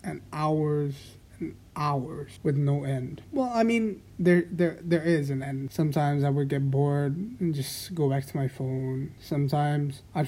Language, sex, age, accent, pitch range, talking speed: Indonesian, male, 30-49, American, 140-175 Hz, 175 wpm